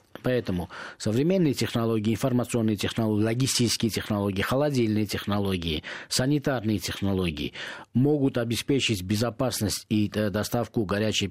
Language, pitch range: Russian, 95-120 Hz